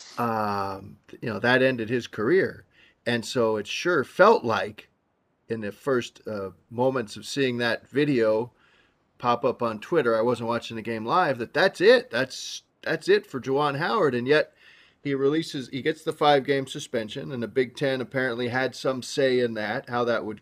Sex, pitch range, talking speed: male, 120-145 Hz, 185 wpm